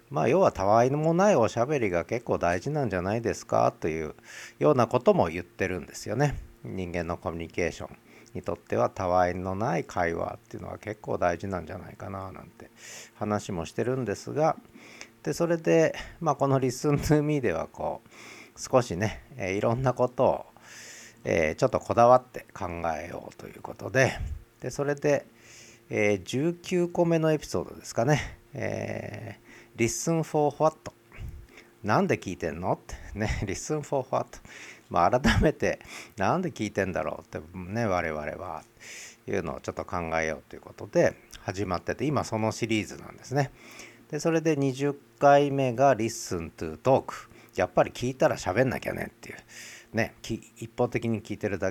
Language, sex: Japanese, male